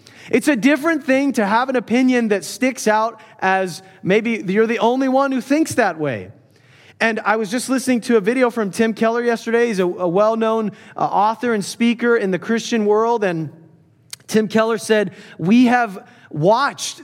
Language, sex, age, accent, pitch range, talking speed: English, male, 30-49, American, 205-255 Hz, 180 wpm